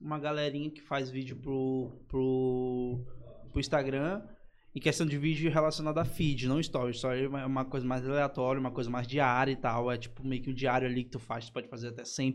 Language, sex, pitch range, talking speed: Portuguese, male, 130-170 Hz, 225 wpm